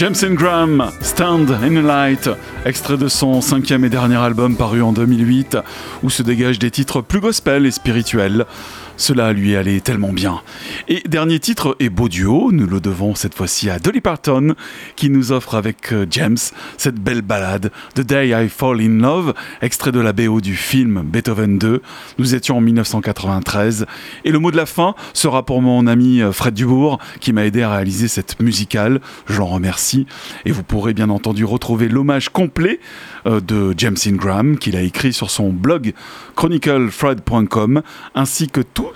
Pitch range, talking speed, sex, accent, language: 105-130 Hz, 175 wpm, male, French, French